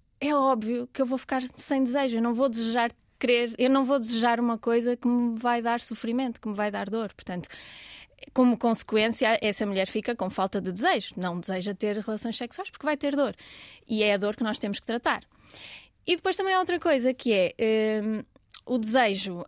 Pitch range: 210-250 Hz